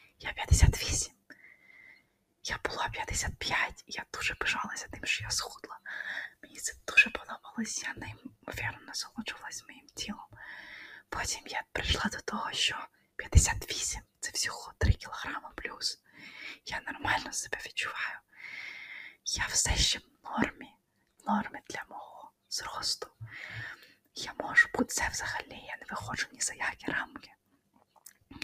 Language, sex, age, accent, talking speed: Ukrainian, female, 20-39, native, 125 wpm